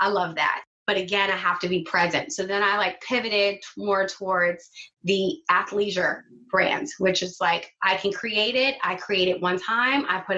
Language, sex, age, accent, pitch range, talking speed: English, female, 20-39, American, 180-215 Hz, 195 wpm